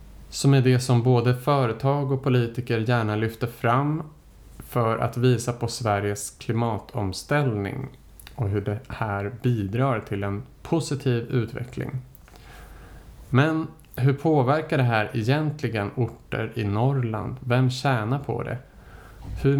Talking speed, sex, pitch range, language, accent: 120 wpm, male, 110-135 Hz, Swedish, Norwegian